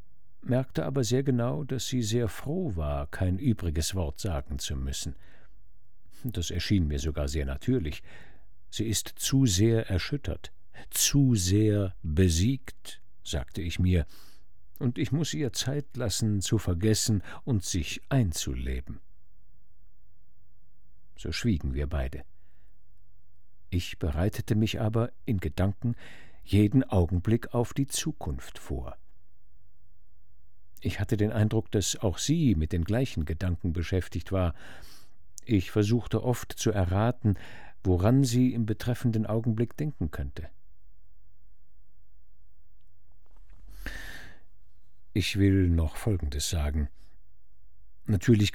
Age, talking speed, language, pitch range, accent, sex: 50-69, 110 wpm, German, 85-110 Hz, German, male